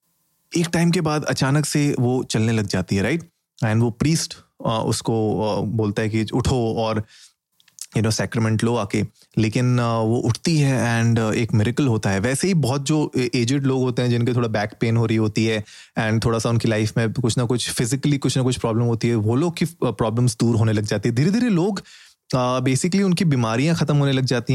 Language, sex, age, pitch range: Hindi, male, 30-49, 115-145 Hz